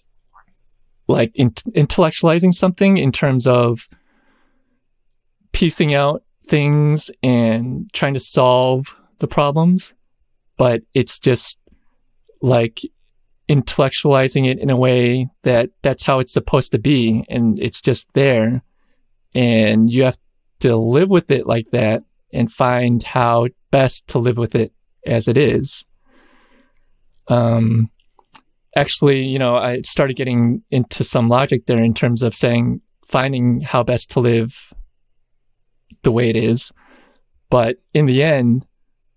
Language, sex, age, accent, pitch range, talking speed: English, male, 20-39, American, 120-145 Hz, 125 wpm